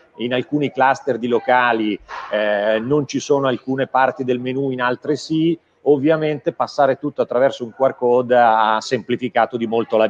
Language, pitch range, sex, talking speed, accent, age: Italian, 115-140 Hz, male, 165 wpm, native, 40-59